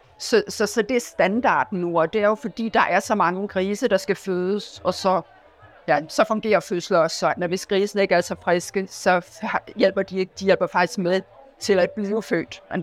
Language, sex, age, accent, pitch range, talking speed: Danish, female, 50-69, native, 170-205 Hz, 220 wpm